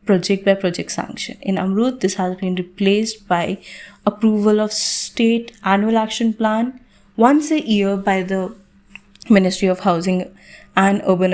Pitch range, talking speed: 185-225 Hz, 145 wpm